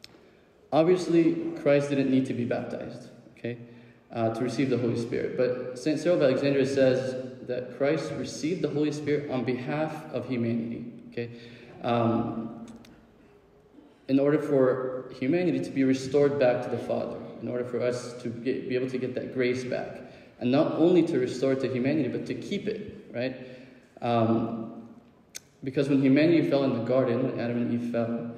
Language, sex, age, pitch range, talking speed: English, male, 20-39, 120-135 Hz, 170 wpm